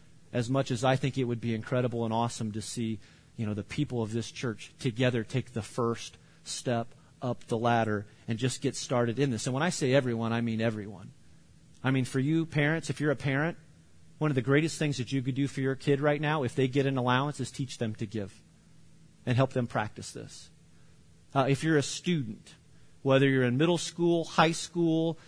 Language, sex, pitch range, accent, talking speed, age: English, male, 125-160 Hz, American, 220 wpm, 40-59